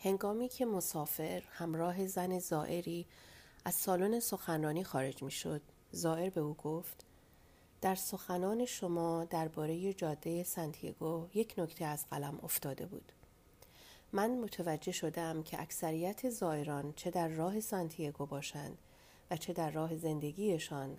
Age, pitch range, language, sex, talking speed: 40-59, 150-190 Hz, Persian, female, 125 wpm